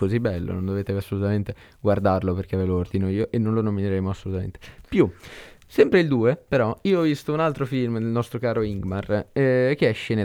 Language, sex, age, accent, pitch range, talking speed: Italian, male, 20-39, native, 95-120 Hz, 205 wpm